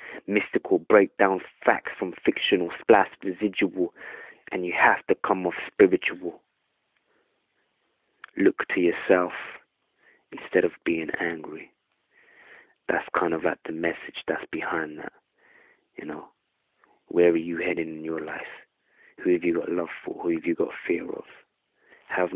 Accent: British